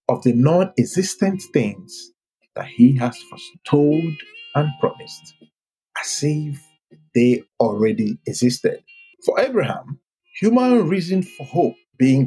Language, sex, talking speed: English, male, 110 wpm